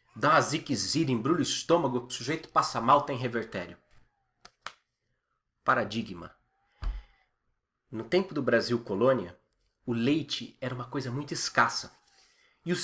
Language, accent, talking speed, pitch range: Portuguese, Brazilian, 125 wpm, 140-200 Hz